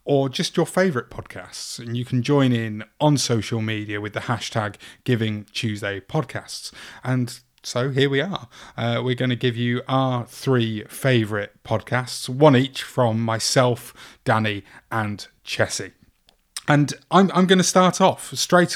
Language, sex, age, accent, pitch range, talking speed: English, male, 30-49, British, 115-140 Hz, 150 wpm